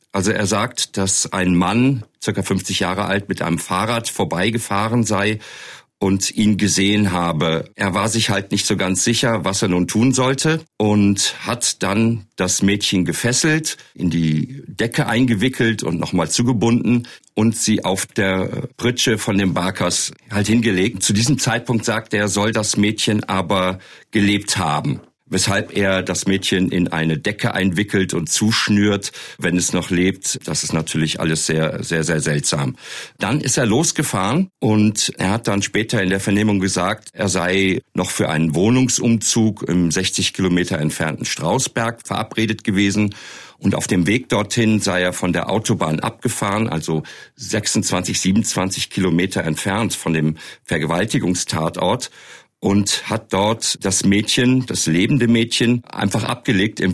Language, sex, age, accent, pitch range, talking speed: German, male, 50-69, German, 95-115 Hz, 150 wpm